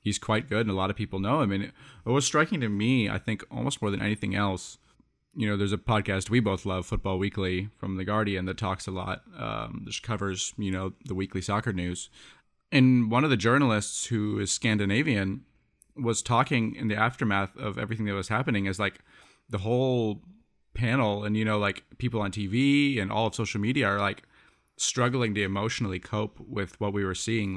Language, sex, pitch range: English, male, 100-120 Hz